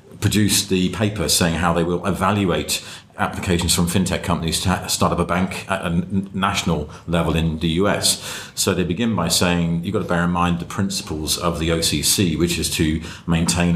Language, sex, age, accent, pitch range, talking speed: English, male, 40-59, British, 85-100 Hz, 190 wpm